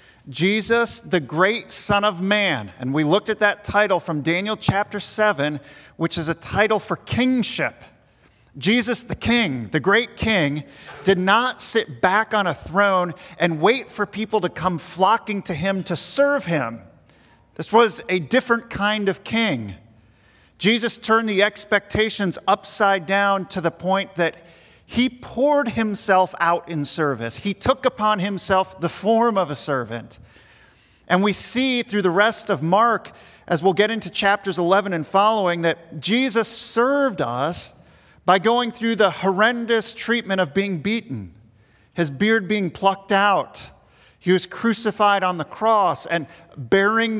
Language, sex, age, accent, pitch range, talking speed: English, male, 40-59, American, 170-215 Hz, 155 wpm